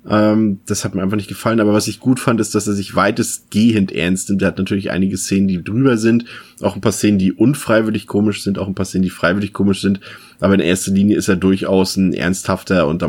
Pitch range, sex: 90-105 Hz, male